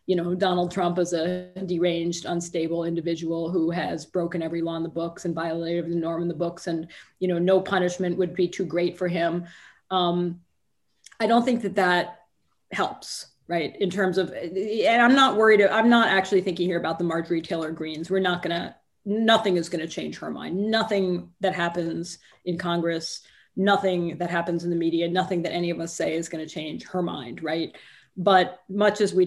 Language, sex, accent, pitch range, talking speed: English, female, American, 170-200 Hz, 195 wpm